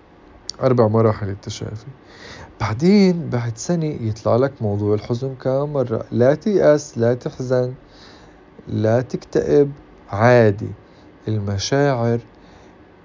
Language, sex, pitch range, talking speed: Arabic, male, 105-135 Hz, 90 wpm